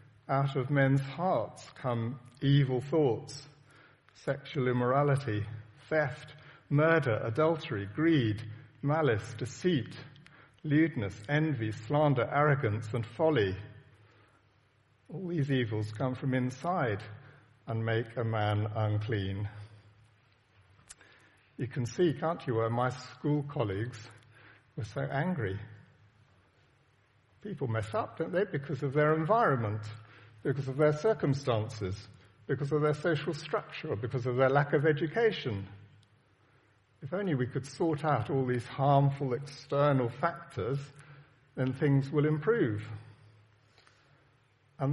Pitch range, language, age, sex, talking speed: 115-150 Hz, English, 50-69, male, 110 wpm